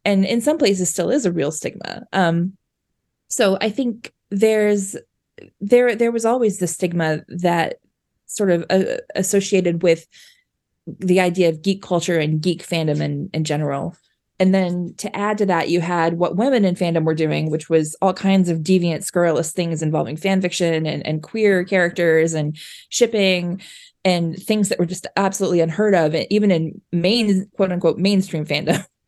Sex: female